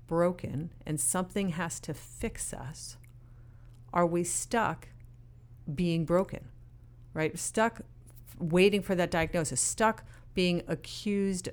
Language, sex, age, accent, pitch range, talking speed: English, female, 40-59, American, 120-175 Hz, 110 wpm